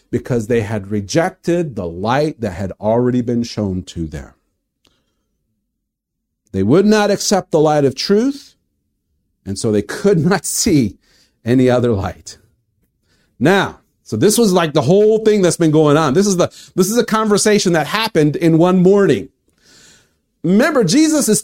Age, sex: 50-69, male